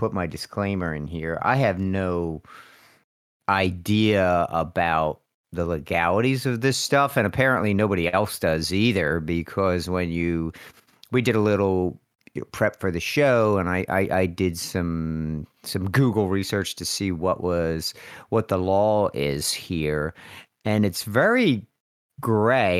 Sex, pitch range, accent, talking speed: male, 85-110 Hz, American, 140 wpm